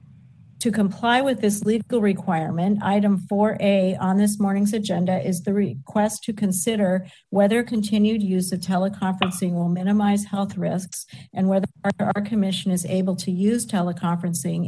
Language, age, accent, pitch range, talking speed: English, 50-69, American, 175-200 Hz, 145 wpm